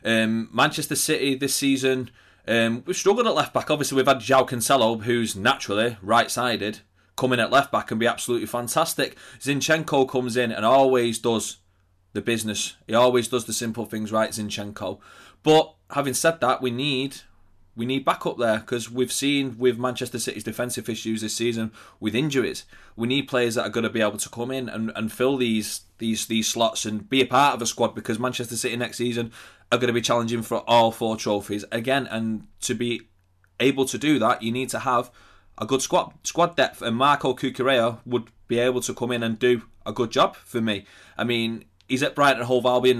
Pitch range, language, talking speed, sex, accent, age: 110-130 Hz, English, 210 wpm, male, British, 20-39